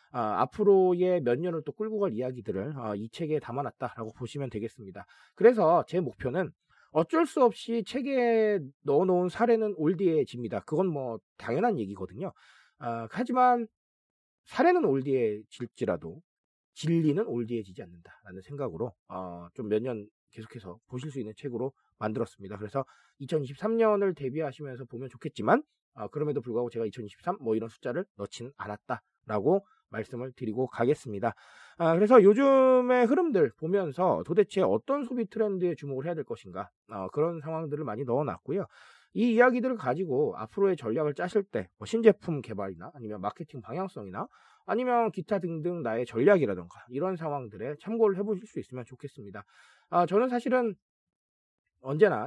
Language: Korean